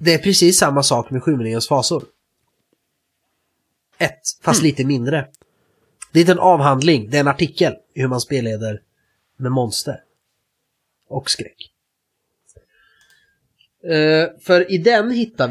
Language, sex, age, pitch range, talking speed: Swedish, male, 30-49, 135-175 Hz, 125 wpm